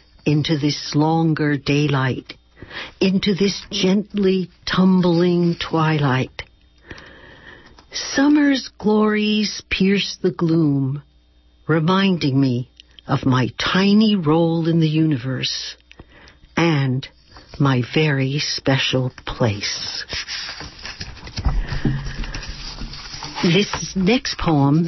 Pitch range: 135-190 Hz